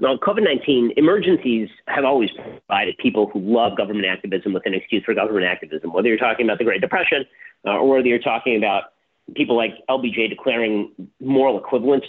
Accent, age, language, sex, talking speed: American, 40-59, English, male, 180 wpm